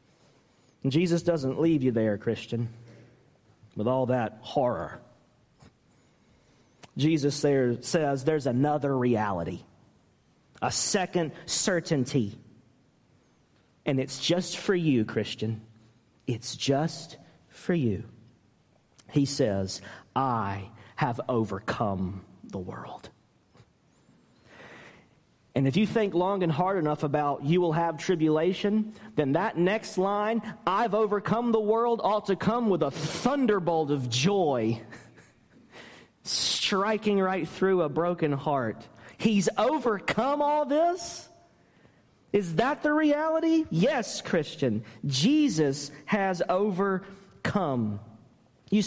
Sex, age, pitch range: male, 40-59, 130-205 Hz